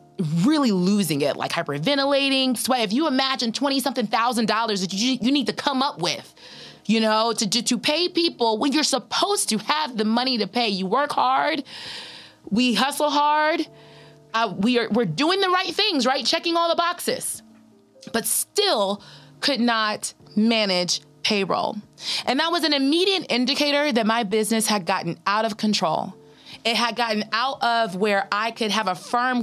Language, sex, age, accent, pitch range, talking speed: English, female, 20-39, American, 205-280 Hz, 175 wpm